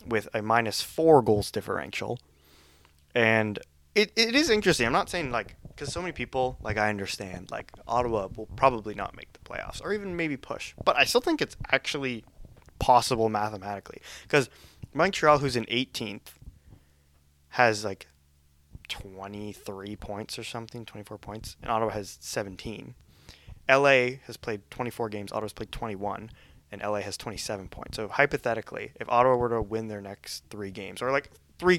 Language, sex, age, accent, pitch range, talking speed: English, male, 20-39, American, 100-125 Hz, 160 wpm